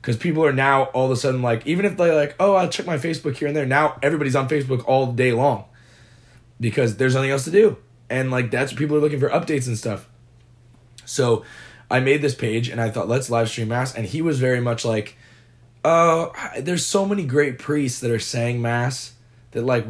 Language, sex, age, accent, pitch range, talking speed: English, male, 20-39, American, 115-140 Hz, 230 wpm